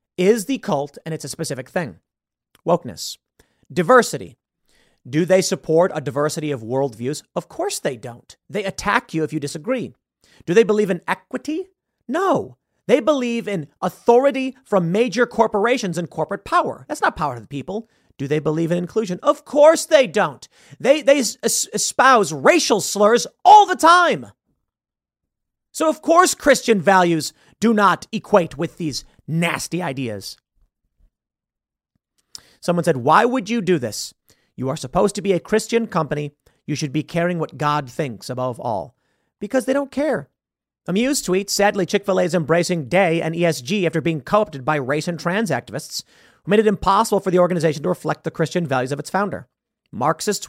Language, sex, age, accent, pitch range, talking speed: English, male, 40-59, American, 150-220 Hz, 165 wpm